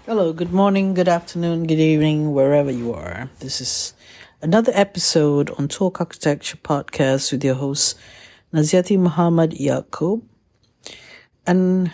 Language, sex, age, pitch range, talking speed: English, female, 60-79, 145-185 Hz, 125 wpm